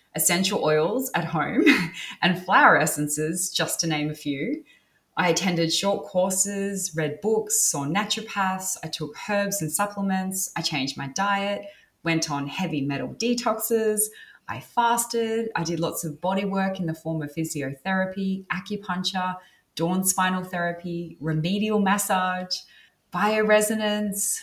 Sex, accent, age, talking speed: female, Australian, 20-39, 135 wpm